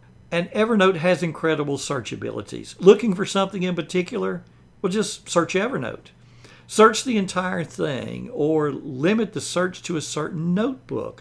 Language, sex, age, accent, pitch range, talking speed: English, male, 60-79, American, 125-190 Hz, 145 wpm